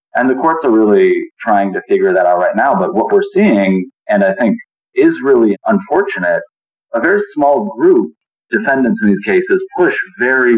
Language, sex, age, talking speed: English, male, 30-49, 180 wpm